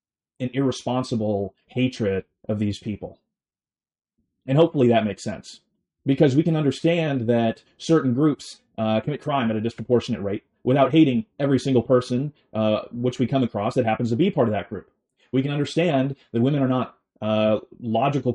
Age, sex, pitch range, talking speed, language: 30-49, male, 110-135 Hz, 170 wpm, English